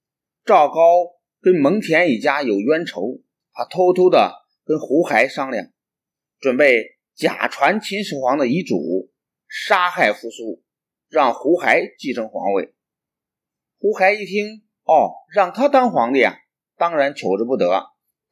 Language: Chinese